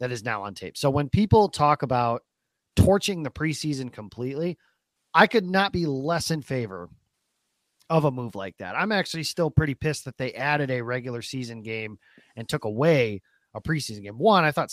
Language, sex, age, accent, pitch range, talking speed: English, male, 30-49, American, 120-165 Hz, 190 wpm